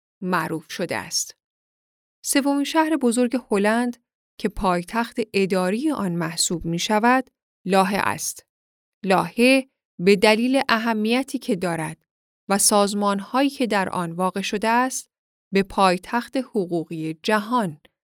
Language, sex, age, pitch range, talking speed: Persian, female, 10-29, 185-250 Hz, 110 wpm